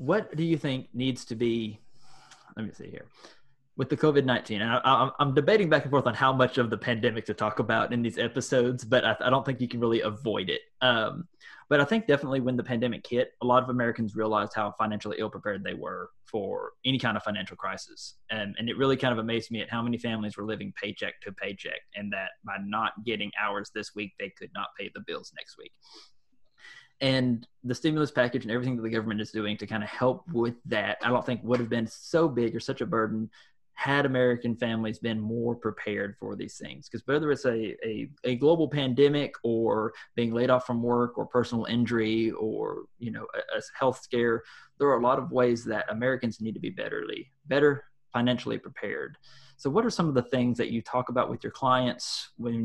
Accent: American